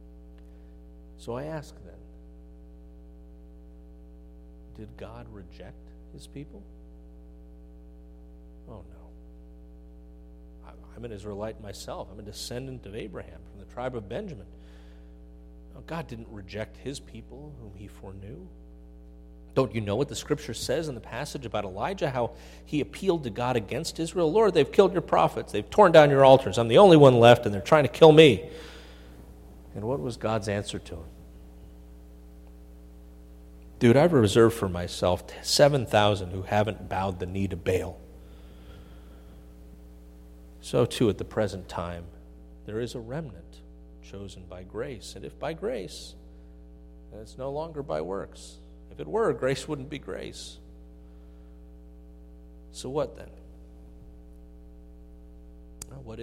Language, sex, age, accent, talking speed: English, male, 40-59, American, 135 wpm